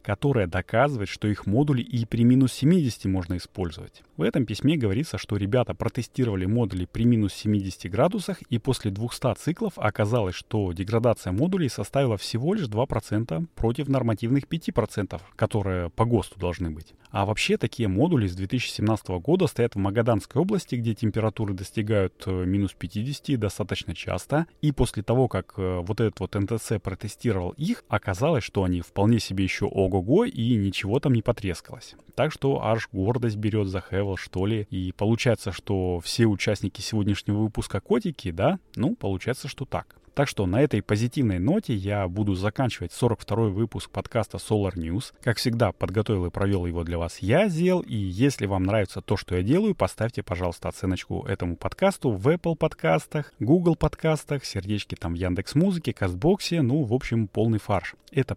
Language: Russian